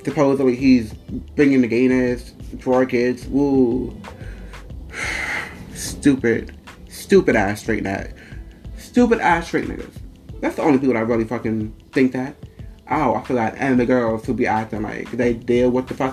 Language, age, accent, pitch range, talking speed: English, 30-49, American, 115-135 Hz, 150 wpm